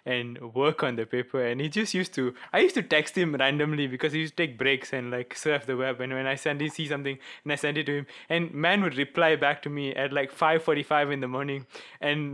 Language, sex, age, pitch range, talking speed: English, male, 20-39, 140-160 Hz, 270 wpm